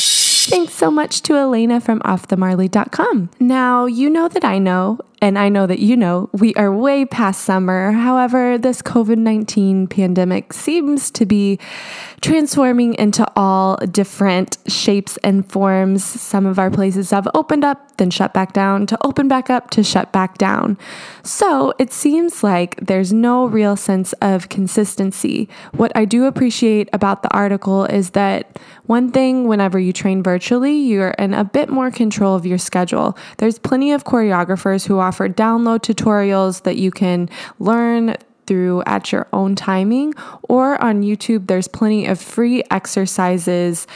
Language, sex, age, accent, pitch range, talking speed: English, female, 20-39, American, 190-240 Hz, 160 wpm